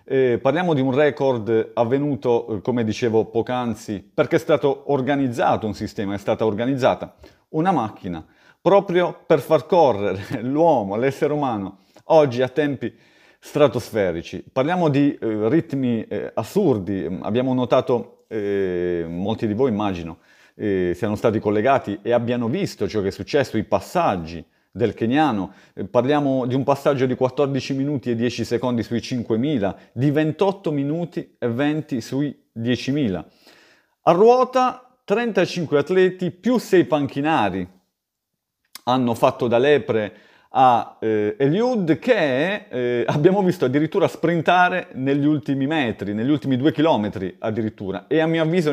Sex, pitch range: male, 120-160 Hz